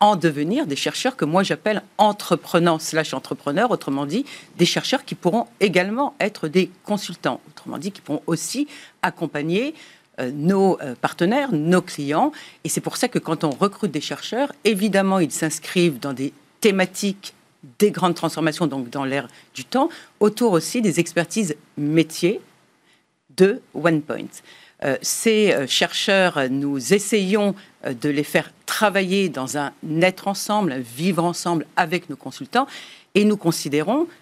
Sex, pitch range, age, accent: female, 155-205 Hz, 50-69, French